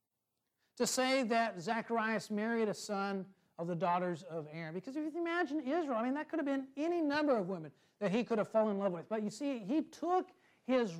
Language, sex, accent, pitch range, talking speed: English, male, American, 200-280 Hz, 225 wpm